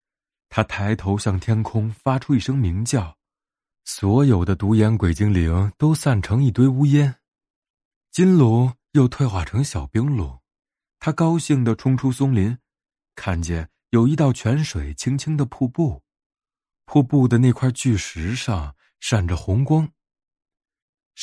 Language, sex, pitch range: Chinese, male, 95-140 Hz